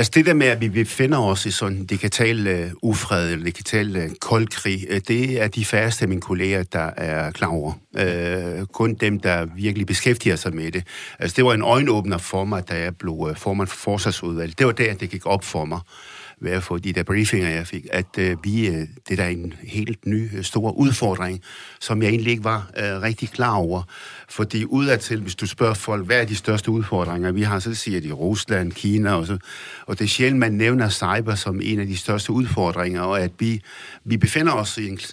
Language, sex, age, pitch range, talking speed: Danish, male, 60-79, 90-115 Hz, 215 wpm